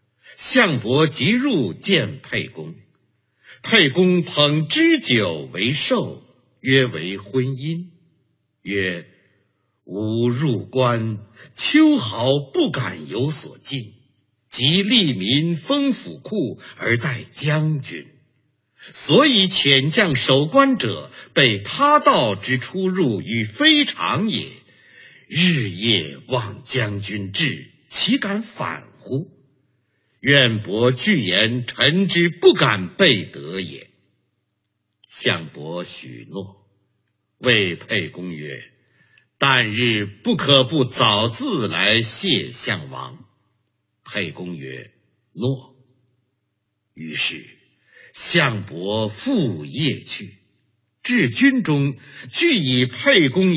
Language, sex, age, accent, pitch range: Chinese, male, 50-69, native, 110-170 Hz